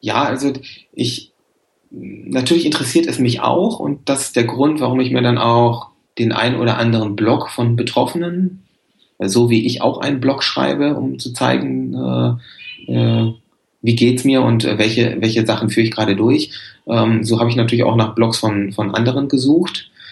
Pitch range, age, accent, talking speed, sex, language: 110-130 Hz, 30-49, German, 180 wpm, male, German